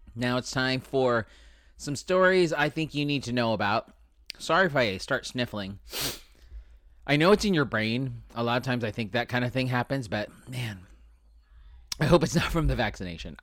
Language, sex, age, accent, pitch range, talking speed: English, male, 30-49, American, 95-125 Hz, 195 wpm